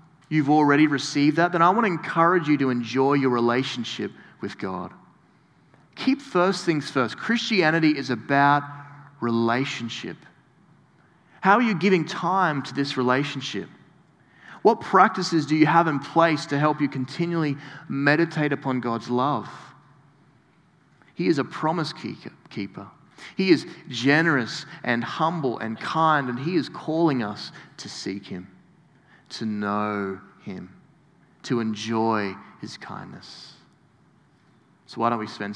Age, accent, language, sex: 30-49, Australian, English, male